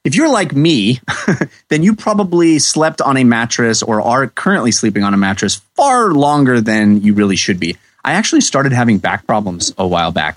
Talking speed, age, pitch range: 195 wpm, 30-49, 110-160 Hz